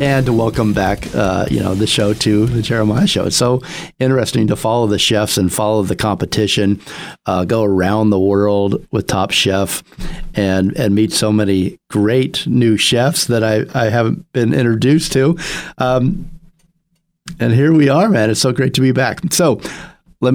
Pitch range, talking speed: 100-135 Hz, 175 wpm